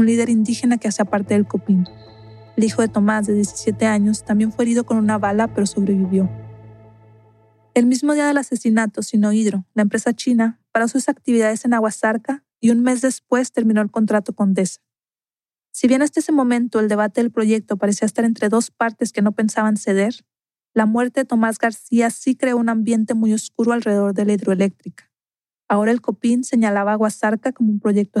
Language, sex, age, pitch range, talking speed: Spanish, female, 40-59, 205-235 Hz, 190 wpm